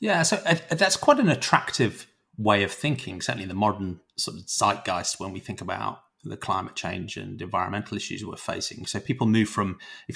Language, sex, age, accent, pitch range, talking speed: English, male, 30-49, British, 95-120 Hz, 190 wpm